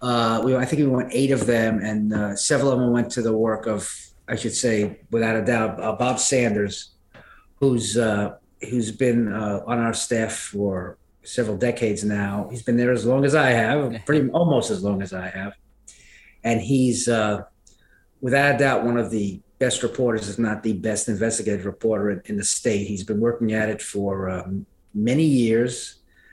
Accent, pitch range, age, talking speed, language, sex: American, 105-130 Hz, 30-49, 190 wpm, English, male